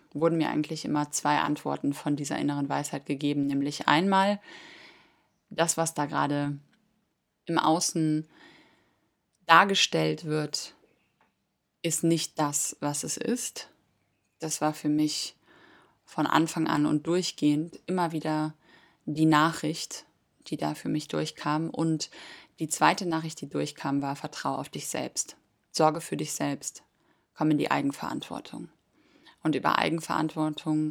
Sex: female